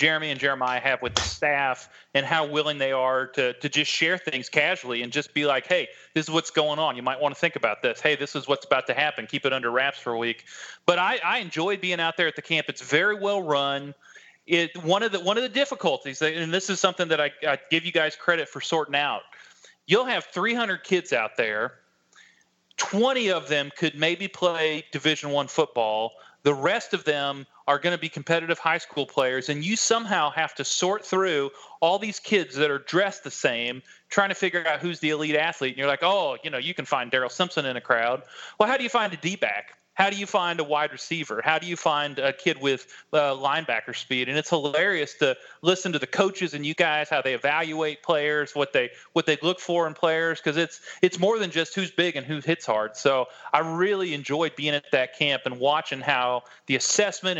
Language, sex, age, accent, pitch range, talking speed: English, male, 30-49, American, 140-175 Hz, 230 wpm